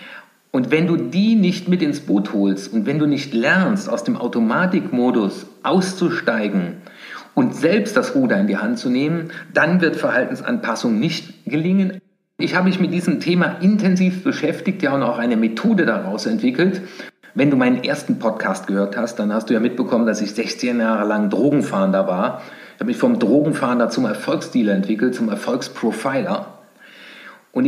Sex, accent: male, German